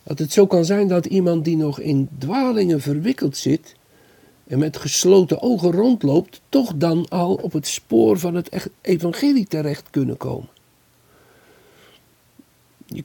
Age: 50-69